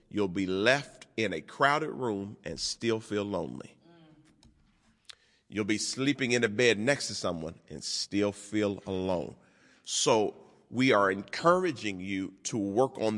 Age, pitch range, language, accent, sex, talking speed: 40-59, 105-140 Hz, English, American, male, 145 wpm